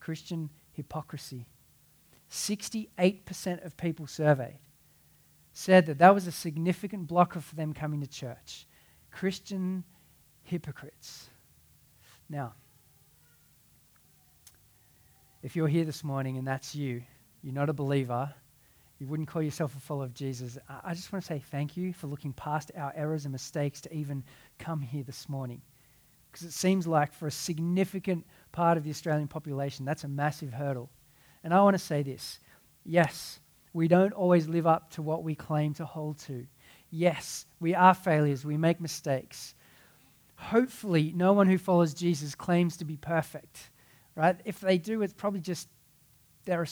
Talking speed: 155 wpm